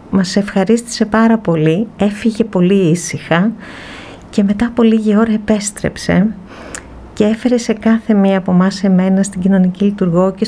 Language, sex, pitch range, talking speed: Greek, female, 180-220 Hz, 145 wpm